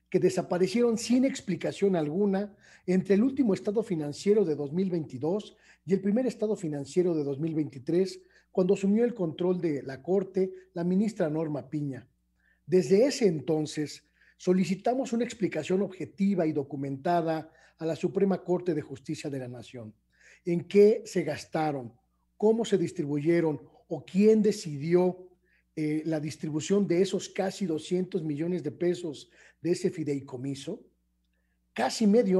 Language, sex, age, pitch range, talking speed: Spanish, male, 40-59, 155-195 Hz, 135 wpm